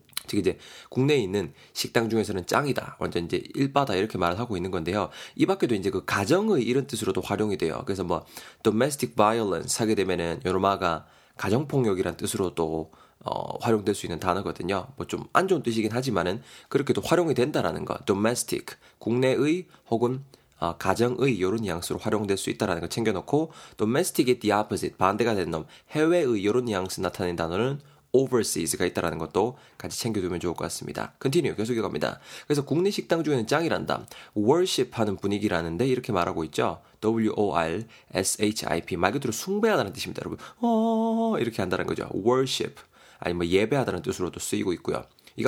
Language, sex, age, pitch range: Korean, male, 20-39, 95-140 Hz